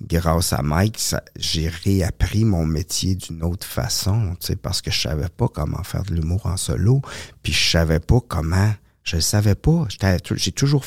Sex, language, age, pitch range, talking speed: male, French, 50-69, 90-125 Hz, 195 wpm